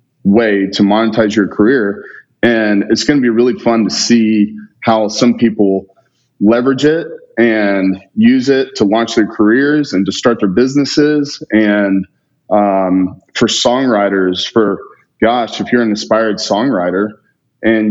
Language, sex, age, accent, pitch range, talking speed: English, male, 30-49, American, 100-125 Hz, 145 wpm